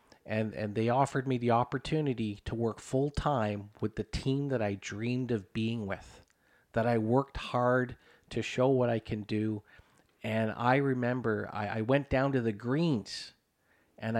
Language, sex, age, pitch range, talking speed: English, male, 40-59, 110-135 Hz, 175 wpm